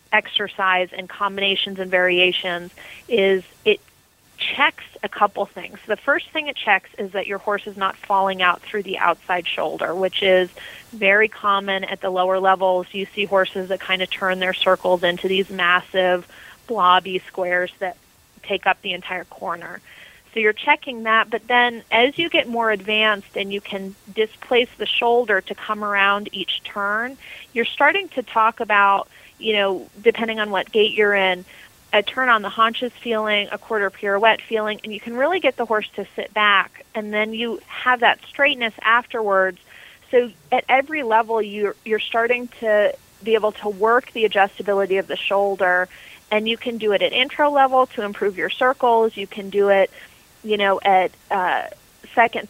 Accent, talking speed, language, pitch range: American, 180 wpm, English, 195-230 Hz